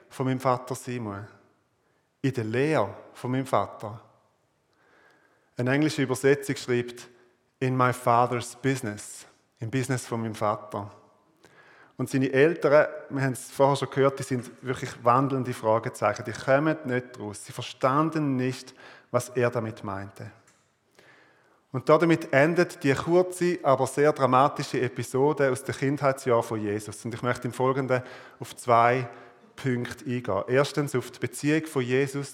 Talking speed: 145 wpm